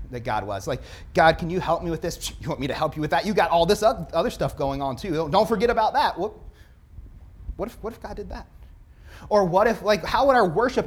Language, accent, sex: English, American, male